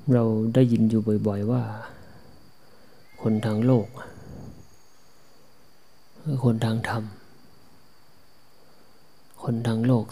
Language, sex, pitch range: Thai, male, 110-125 Hz